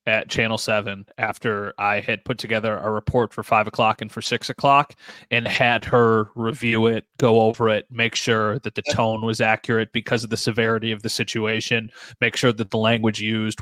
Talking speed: 200 wpm